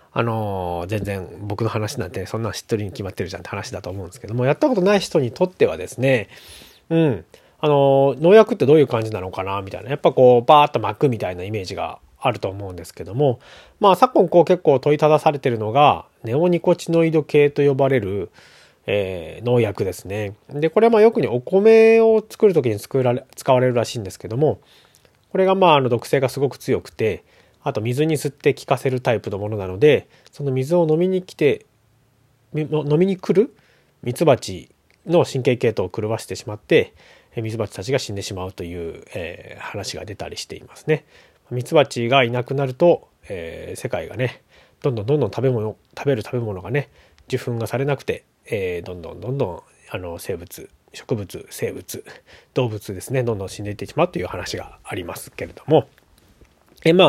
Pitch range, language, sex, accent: 110-160 Hz, Japanese, male, native